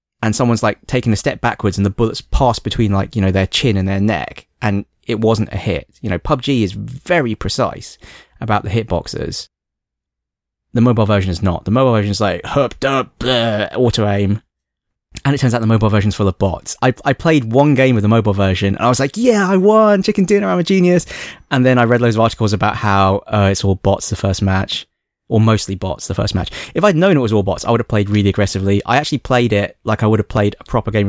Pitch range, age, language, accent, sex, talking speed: 100-120 Hz, 20-39, English, British, male, 245 wpm